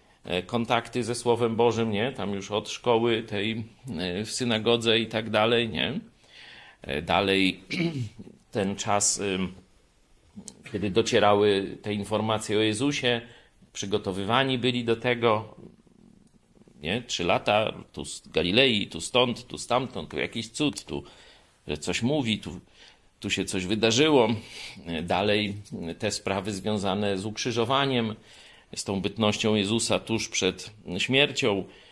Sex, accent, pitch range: male, native, 100-125 Hz